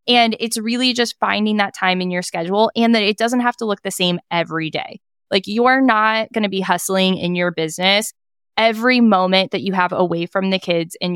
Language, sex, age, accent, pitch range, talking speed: English, female, 20-39, American, 175-220 Hz, 220 wpm